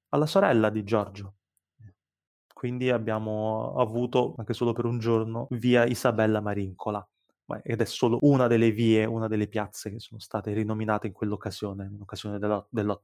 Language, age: Italian, 20-39